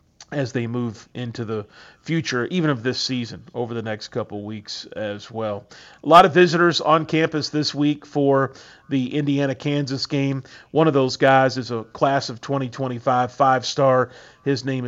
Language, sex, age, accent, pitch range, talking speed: English, male, 40-59, American, 120-140 Hz, 165 wpm